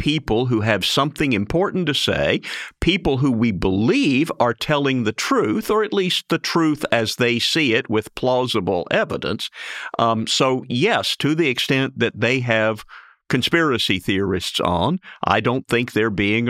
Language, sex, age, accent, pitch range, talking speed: English, male, 50-69, American, 110-140 Hz, 160 wpm